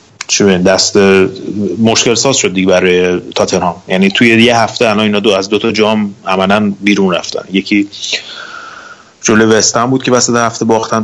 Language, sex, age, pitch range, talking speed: Persian, male, 30-49, 95-115 Hz, 145 wpm